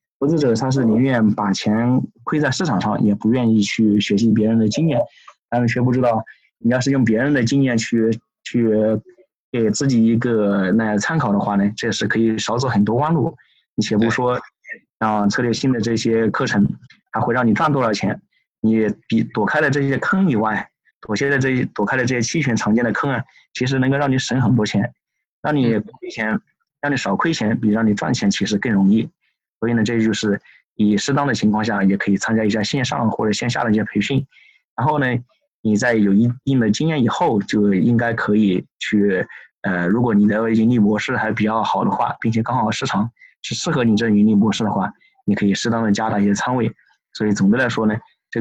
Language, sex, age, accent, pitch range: Chinese, male, 20-39, native, 105-125 Hz